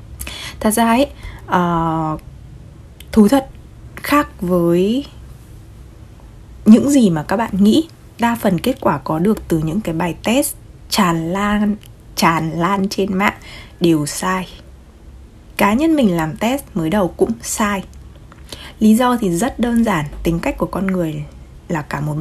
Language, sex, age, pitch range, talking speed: Vietnamese, female, 20-39, 170-230 Hz, 150 wpm